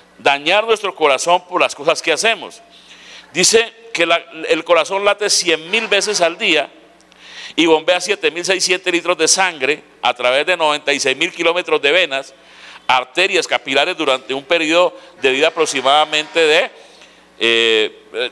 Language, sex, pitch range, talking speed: Spanish, male, 150-205 Hz, 140 wpm